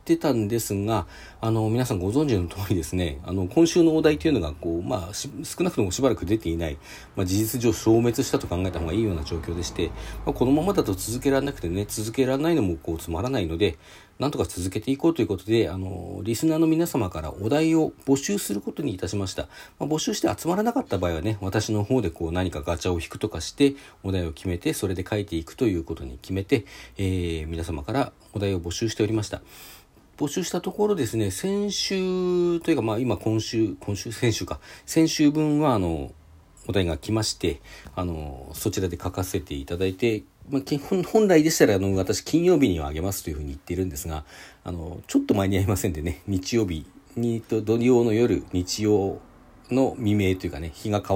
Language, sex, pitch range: Japanese, male, 90-130 Hz